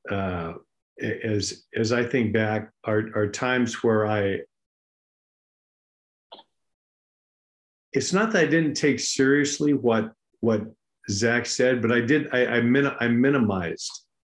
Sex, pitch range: male, 110-140 Hz